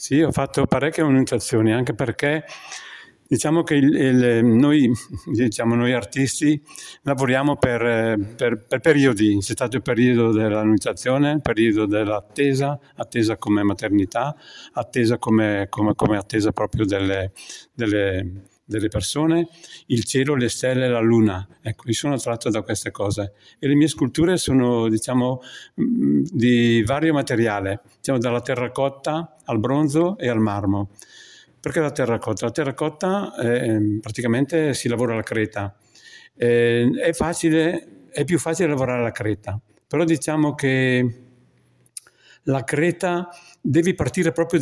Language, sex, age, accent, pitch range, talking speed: Italian, male, 60-79, native, 110-145 Hz, 130 wpm